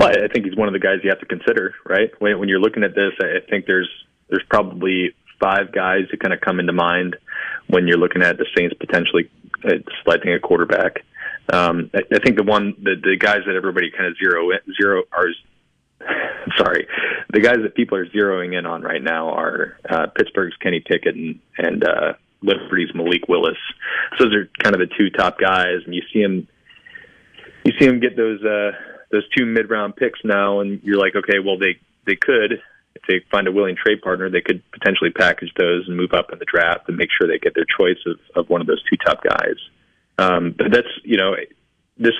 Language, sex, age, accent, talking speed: English, male, 30-49, American, 220 wpm